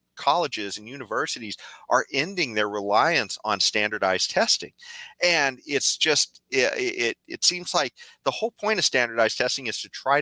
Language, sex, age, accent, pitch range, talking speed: English, male, 40-59, American, 95-130 Hz, 160 wpm